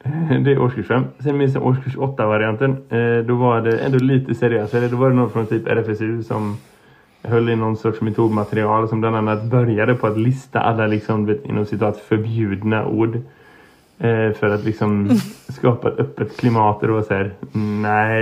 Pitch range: 105-120 Hz